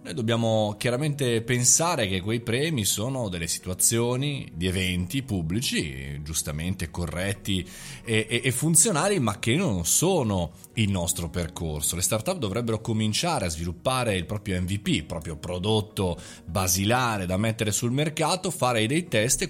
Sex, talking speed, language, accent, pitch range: male, 140 wpm, Italian, native, 90-125 Hz